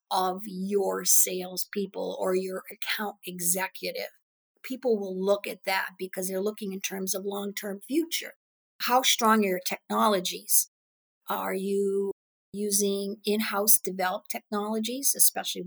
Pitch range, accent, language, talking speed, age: 190-240 Hz, American, English, 125 wpm, 50-69